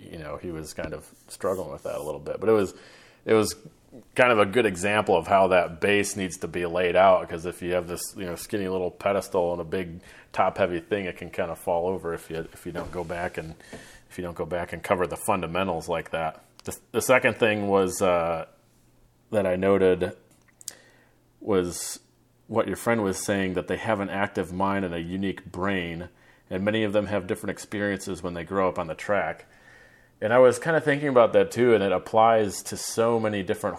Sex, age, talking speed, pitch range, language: male, 30-49, 225 wpm, 90-100 Hz, English